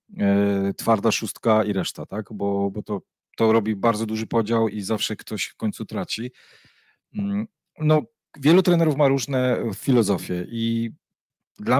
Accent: native